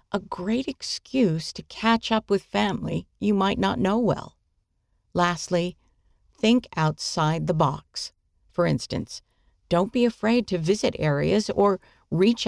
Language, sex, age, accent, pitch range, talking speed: English, female, 50-69, American, 155-220 Hz, 135 wpm